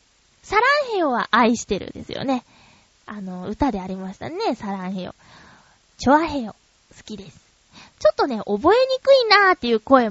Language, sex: Japanese, female